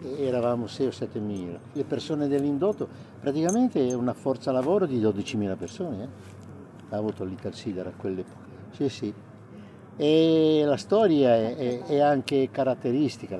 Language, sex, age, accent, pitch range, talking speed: Italian, male, 50-69, native, 100-130 Hz, 150 wpm